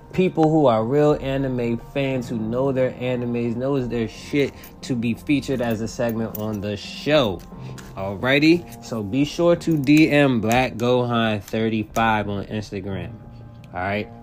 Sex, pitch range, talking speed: male, 100-125 Hz, 140 wpm